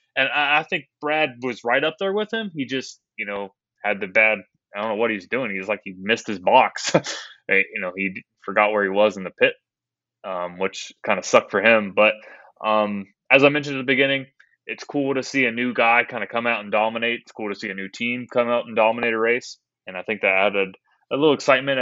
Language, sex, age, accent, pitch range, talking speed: English, male, 20-39, American, 105-125 Hz, 240 wpm